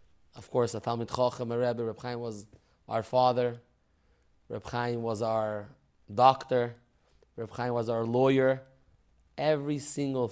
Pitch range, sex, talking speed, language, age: 105-135 Hz, male, 110 wpm, English, 30-49